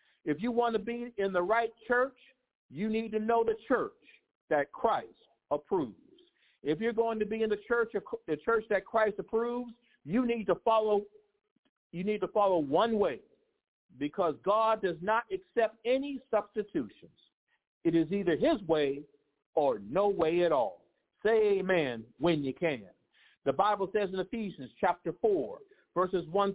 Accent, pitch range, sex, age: American, 175-240 Hz, male, 50-69